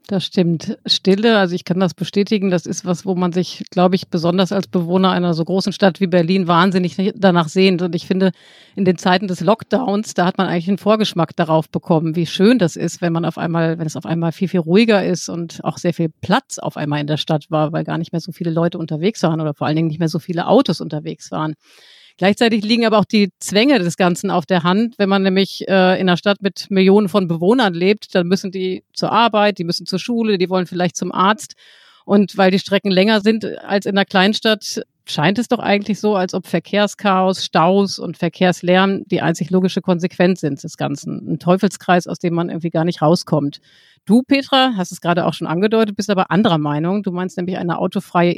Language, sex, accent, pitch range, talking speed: German, female, German, 170-200 Hz, 225 wpm